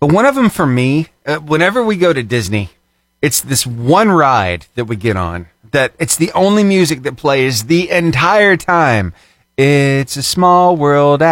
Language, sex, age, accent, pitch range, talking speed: English, male, 30-49, American, 120-175 Hz, 180 wpm